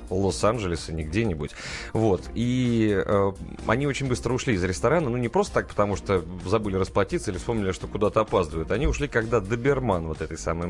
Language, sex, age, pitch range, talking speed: Russian, male, 30-49, 90-120 Hz, 175 wpm